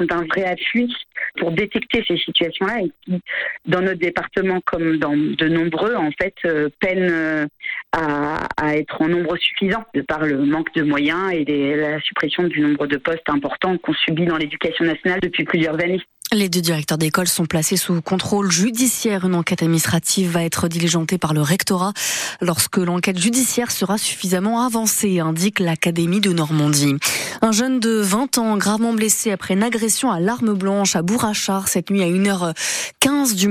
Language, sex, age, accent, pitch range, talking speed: French, female, 30-49, French, 165-215 Hz, 170 wpm